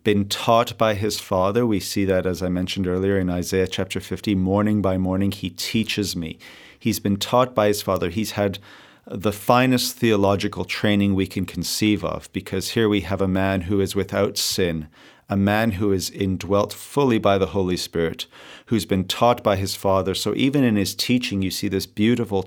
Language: English